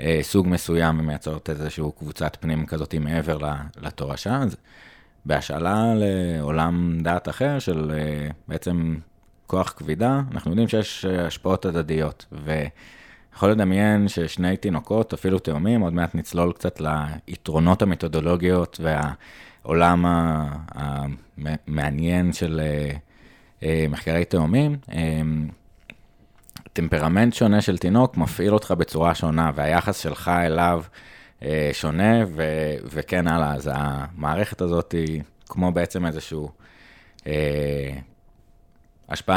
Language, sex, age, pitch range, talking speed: Hebrew, male, 20-39, 75-90 Hz, 100 wpm